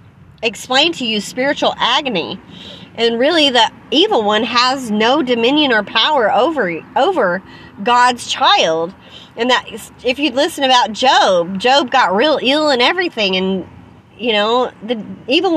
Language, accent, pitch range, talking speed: English, American, 215-285 Hz, 145 wpm